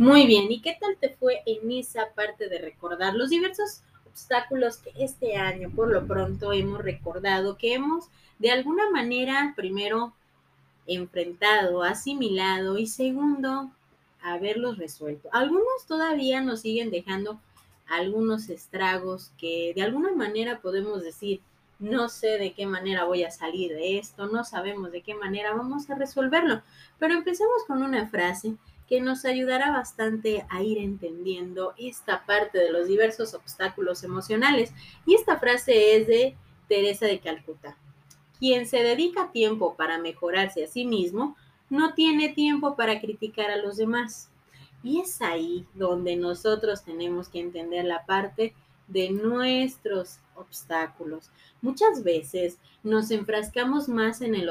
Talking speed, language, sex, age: 145 wpm, Spanish, female, 20-39